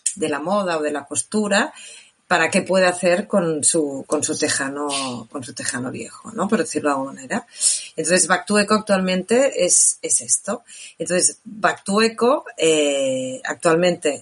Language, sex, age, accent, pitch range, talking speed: Spanish, female, 30-49, Spanish, 150-200 Hz, 160 wpm